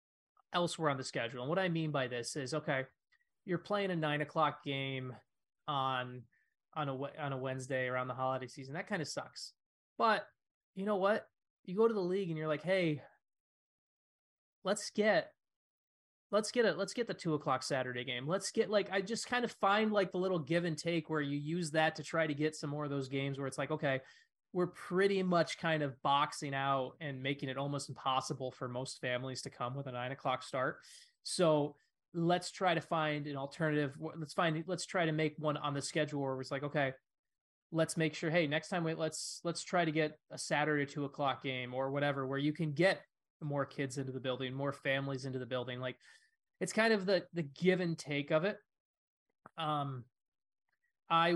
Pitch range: 135-175 Hz